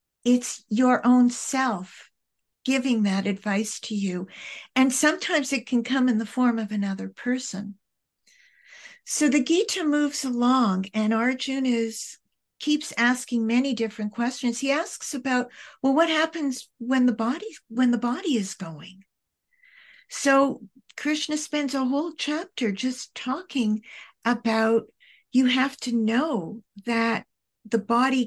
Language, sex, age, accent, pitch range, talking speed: English, female, 50-69, American, 220-265 Hz, 130 wpm